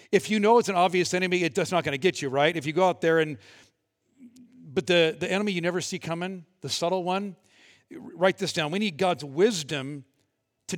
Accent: American